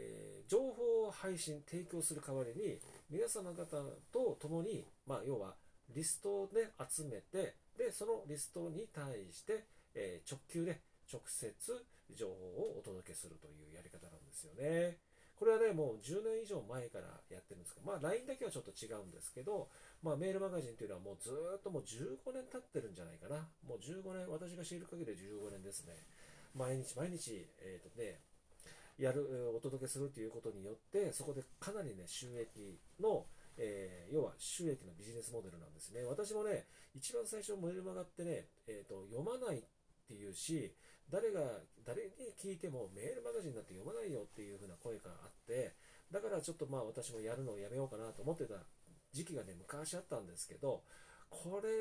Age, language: 40-59, Japanese